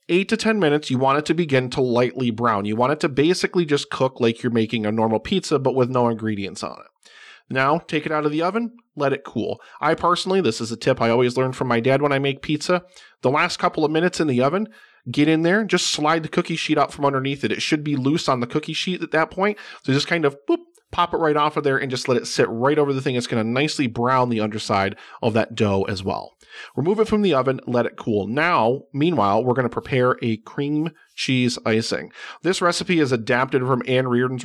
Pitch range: 120-160 Hz